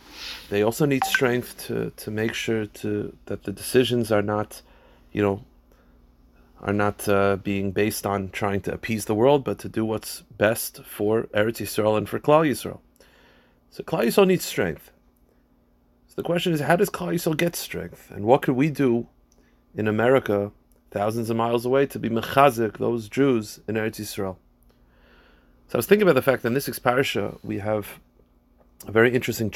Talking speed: 180 wpm